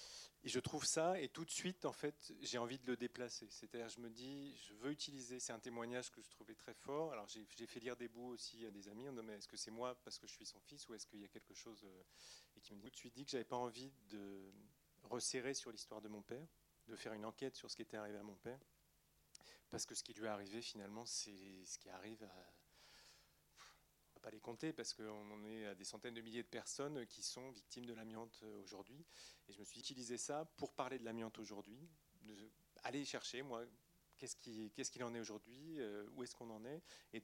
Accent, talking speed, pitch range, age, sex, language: French, 245 wpm, 105-130 Hz, 30-49, male, French